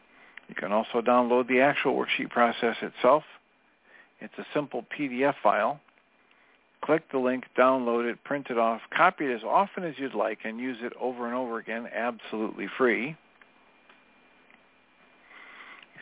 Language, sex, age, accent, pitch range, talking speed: English, male, 50-69, American, 110-135 Hz, 145 wpm